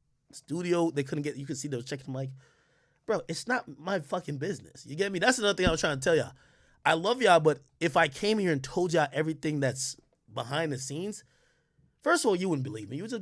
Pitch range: 135-165 Hz